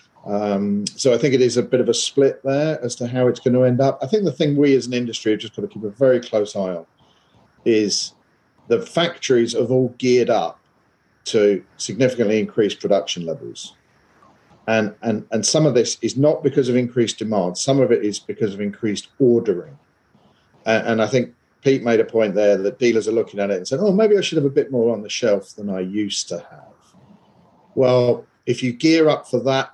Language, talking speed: English, 220 wpm